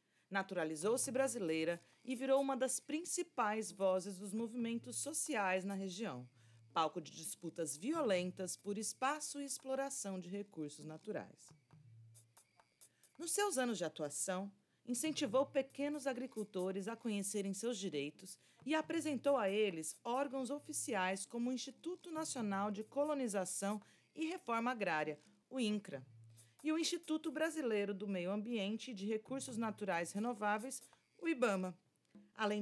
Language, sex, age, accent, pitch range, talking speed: Portuguese, female, 40-59, Brazilian, 185-255 Hz, 125 wpm